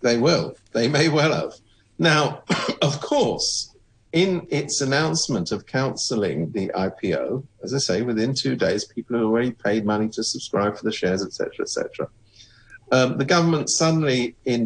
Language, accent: English, British